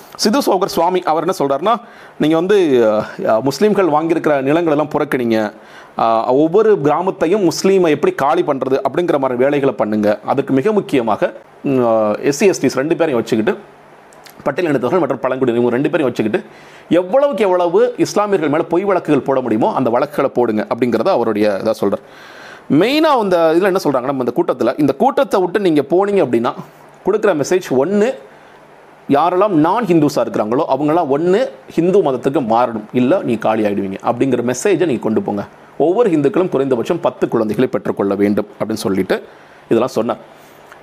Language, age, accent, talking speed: Tamil, 40-59, native, 140 wpm